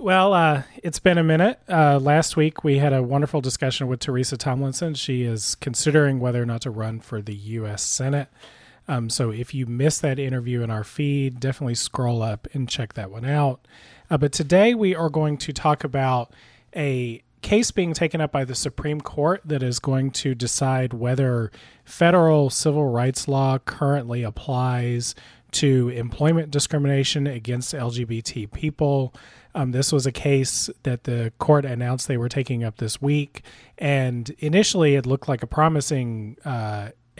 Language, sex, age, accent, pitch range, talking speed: English, male, 30-49, American, 120-145 Hz, 170 wpm